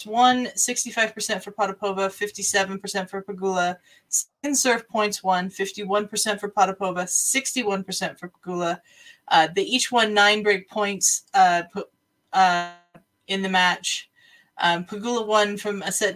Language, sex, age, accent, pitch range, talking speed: English, female, 20-39, American, 185-215 Hz, 130 wpm